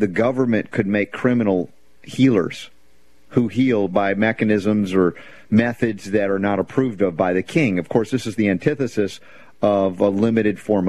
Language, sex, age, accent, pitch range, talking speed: English, male, 40-59, American, 100-125 Hz, 165 wpm